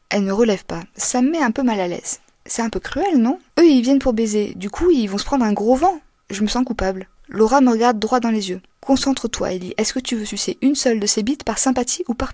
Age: 20-39